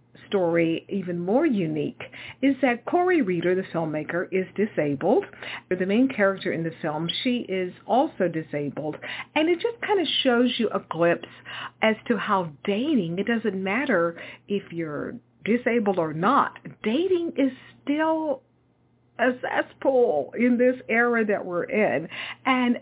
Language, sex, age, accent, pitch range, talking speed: English, female, 50-69, American, 165-255 Hz, 145 wpm